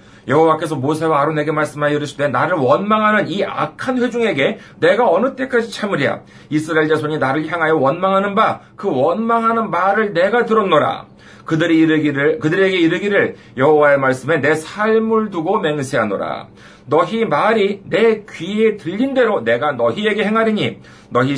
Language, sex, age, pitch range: Korean, male, 40-59, 135-195 Hz